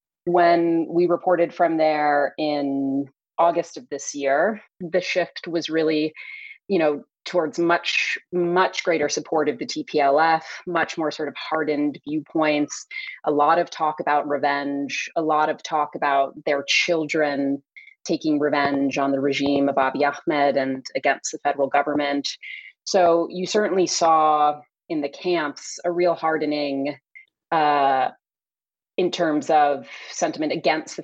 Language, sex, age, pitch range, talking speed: English, female, 30-49, 140-170 Hz, 140 wpm